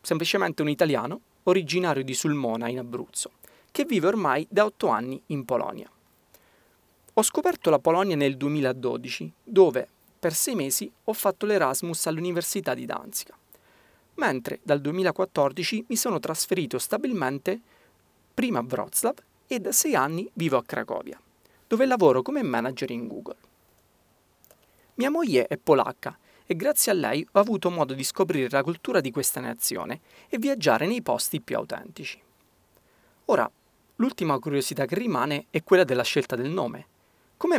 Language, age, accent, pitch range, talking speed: Italian, 30-49, native, 140-210 Hz, 145 wpm